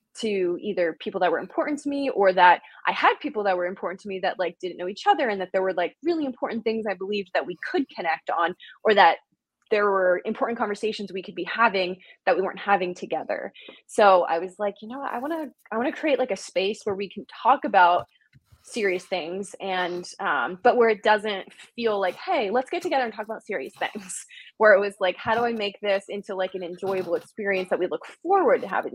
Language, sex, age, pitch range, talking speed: English, female, 20-39, 185-245 Hz, 240 wpm